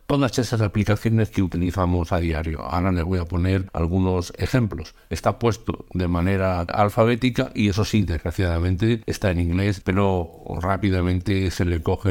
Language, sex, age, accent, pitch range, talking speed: Spanish, male, 60-79, Spanish, 90-105 Hz, 155 wpm